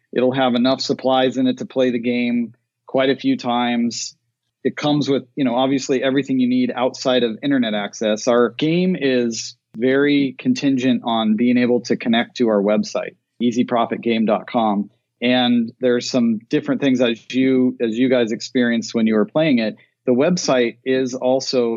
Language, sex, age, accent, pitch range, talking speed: English, male, 40-59, American, 120-135 Hz, 170 wpm